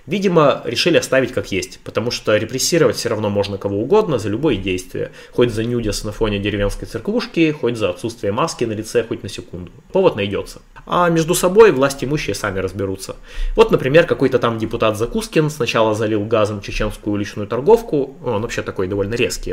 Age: 20-39